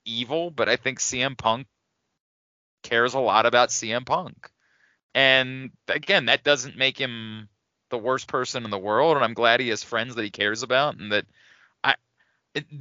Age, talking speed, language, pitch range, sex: 30-49, 175 wpm, English, 125-165 Hz, male